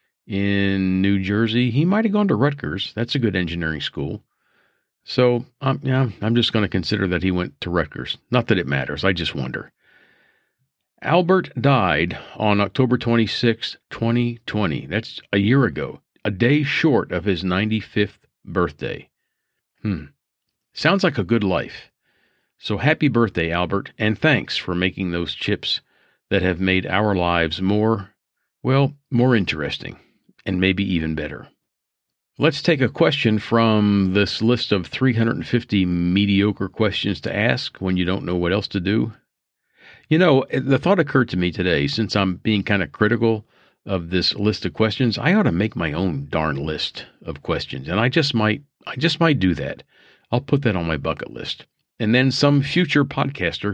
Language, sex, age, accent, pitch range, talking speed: English, male, 50-69, American, 95-125 Hz, 170 wpm